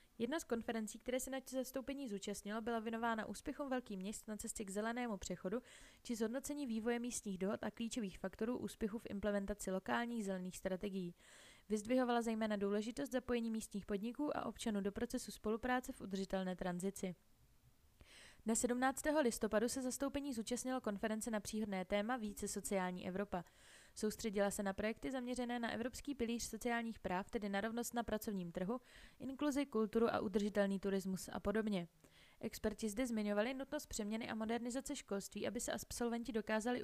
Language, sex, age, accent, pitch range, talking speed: Czech, female, 20-39, native, 200-245 Hz, 155 wpm